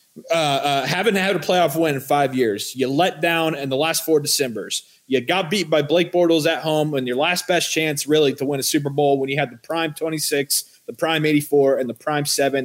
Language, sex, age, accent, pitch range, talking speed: English, male, 30-49, American, 160-225 Hz, 235 wpm